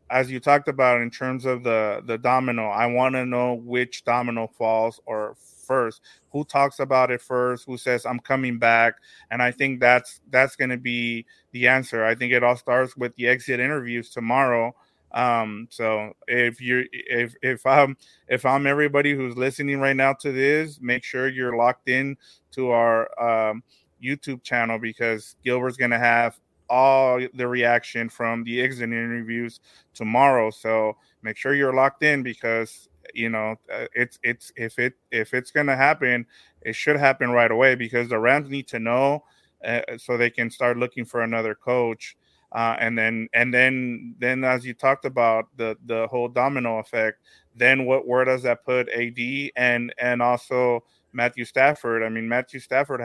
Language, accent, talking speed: English, American, 180 wpm